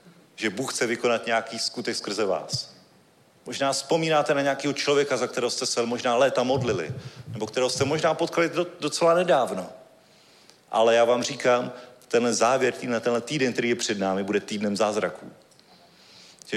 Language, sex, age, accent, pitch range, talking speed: Czech, male, 40-59, native, 110-145 Hz, 155 wpm